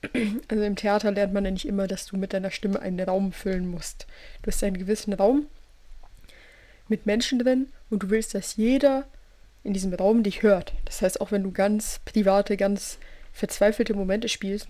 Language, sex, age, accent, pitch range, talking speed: German, female, 20-39, German, 195-215 Hz, 185 wpm